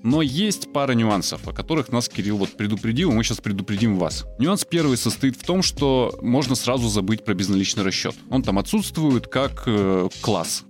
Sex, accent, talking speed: male, native, 190 wpm